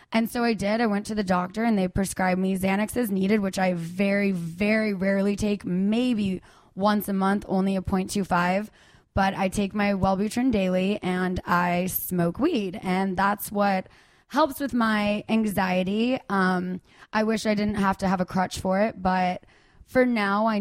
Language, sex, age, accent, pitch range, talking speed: English, female, 20-39, American, 185-210 Hz, 185 wpm